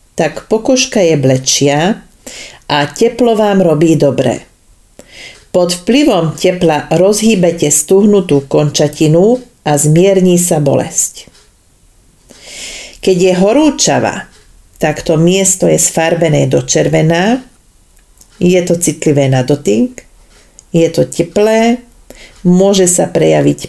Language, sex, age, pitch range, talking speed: Slovak, female, 40-59, 155-210 Hz, 100 wpm